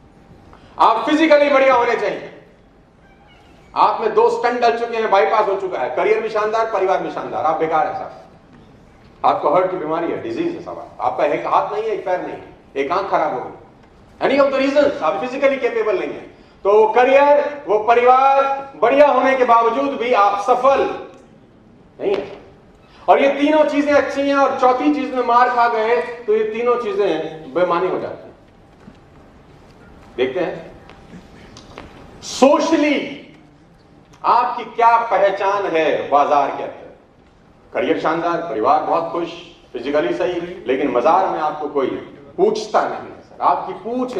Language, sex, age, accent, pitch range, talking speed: Hindi, male, 40-59, native, 200-275 Hz, 145 wpm